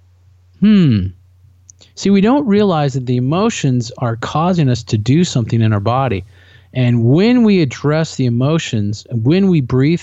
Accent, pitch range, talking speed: American, 105-145 Hz, 155 wpm